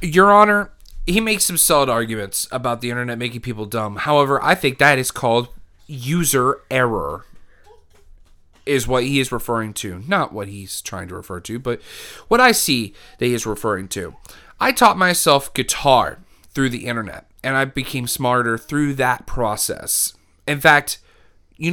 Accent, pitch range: American, 115-155 Hz